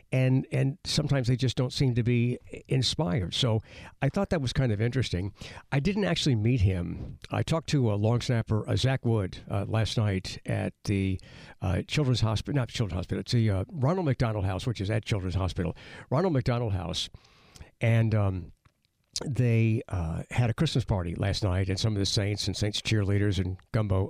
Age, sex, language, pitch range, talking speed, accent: 60-79, male, English, 100-130 Hz, 190 wpm, American